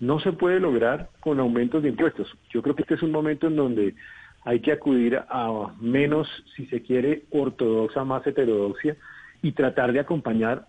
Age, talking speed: 40-59, 180 wpm